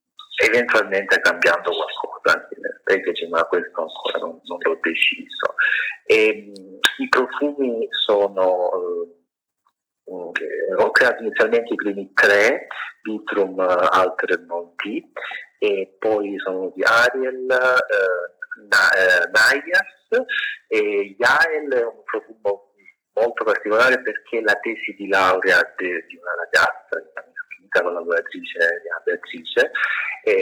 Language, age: Italian, 50-69